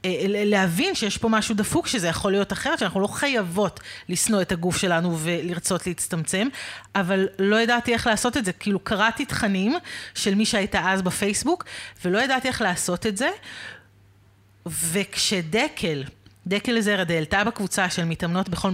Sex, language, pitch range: female, Hebrew, 180-240 Hz